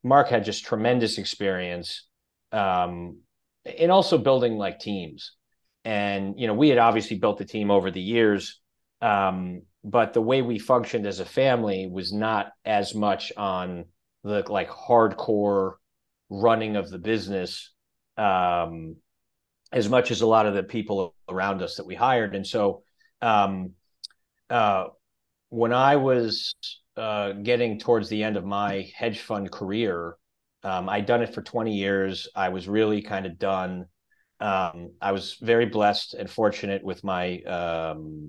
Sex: male